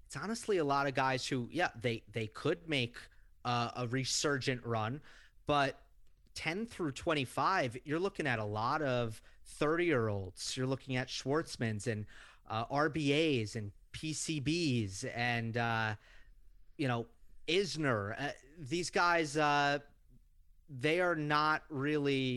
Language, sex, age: English, male, 30-49